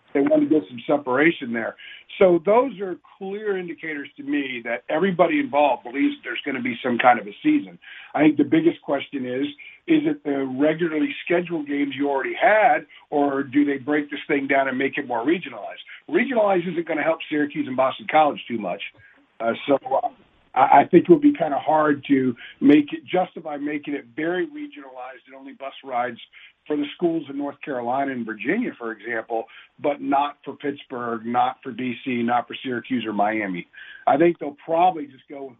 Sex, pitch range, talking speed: male, 130-185 Hz, 195 wpm